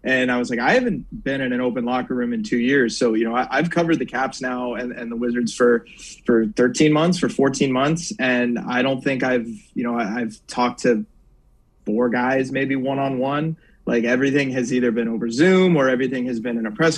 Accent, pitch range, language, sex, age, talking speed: American, 120-145 Hz, English, male, 20-39, 220 wpm